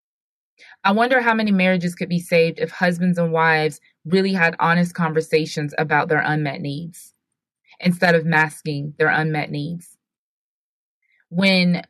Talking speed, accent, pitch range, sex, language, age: 135 wpm, American, 165-205 Hz, female, English, 20-39